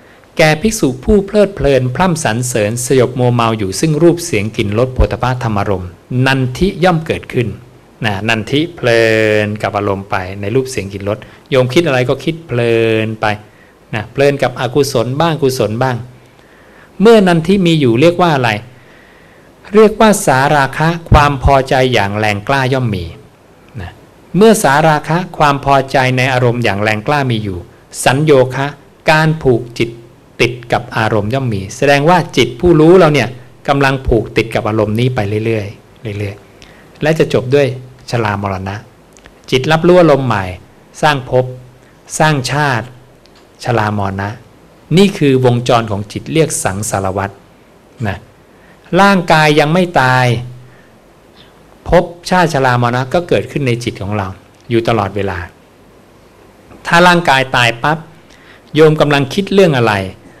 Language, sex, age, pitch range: English, male, 60-79, 110-155 Hz